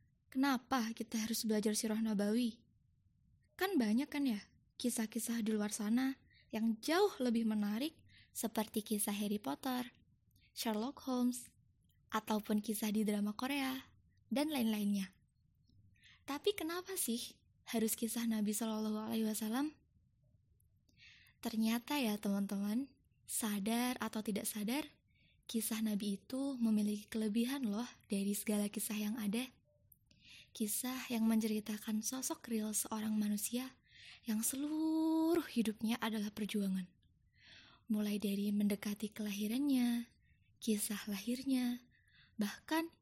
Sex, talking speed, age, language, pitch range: female, 105 wpm, 20-39, Indonesian, 210-255 Hz